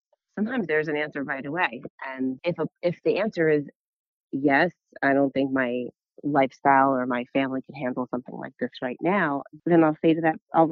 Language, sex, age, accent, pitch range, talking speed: English, female, 30-49, American, 140-170 Hz, 195 wpm